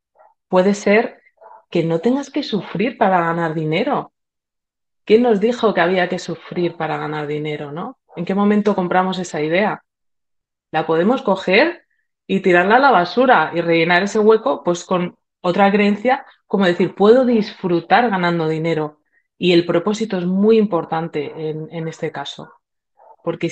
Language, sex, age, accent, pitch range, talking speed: Spanish, female, 20-39, Spanish, 170-225 Hz, 155 wpm